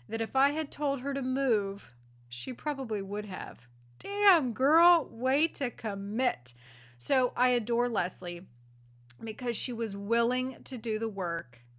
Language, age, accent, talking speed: English, 30-49, American, 150 wpm